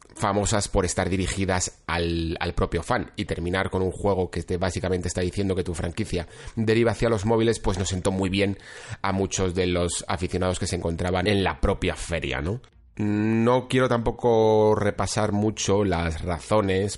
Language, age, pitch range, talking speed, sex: Spanish, 30-49, 90-105 Hz, 175 wpm, male